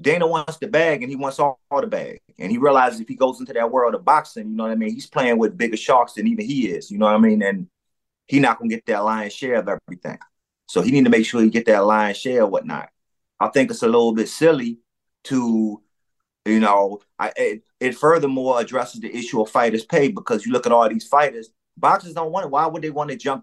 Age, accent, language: 30-49, American, English